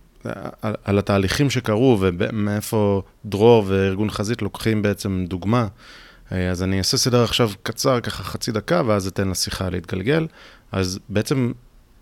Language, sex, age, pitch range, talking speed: Hebrew, male, 30-49, 95-120 Hz, 130 wpm